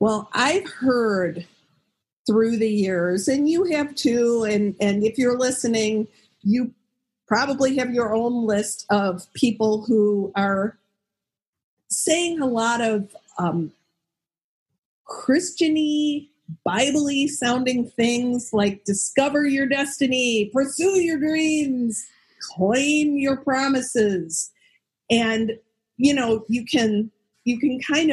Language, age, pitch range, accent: English, 50-69, 200-255 Hz, American